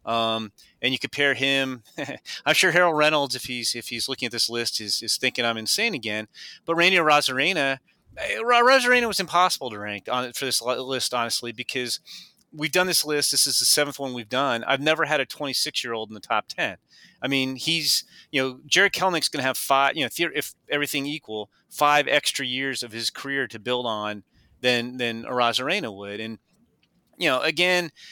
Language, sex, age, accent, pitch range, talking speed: English, male, 30-49, American, 115-145 Hz, 190 wpm